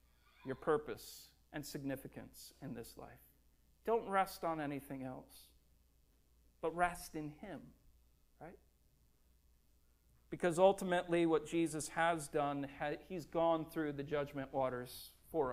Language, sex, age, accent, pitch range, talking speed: English, male, 40-59, American, 125-165 Hz, 115 wpm